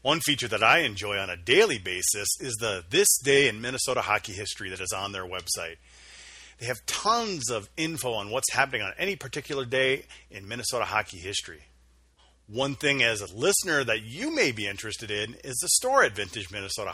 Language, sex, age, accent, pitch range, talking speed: English, male, 40-59, American, 100-135 Hz, 195 wpm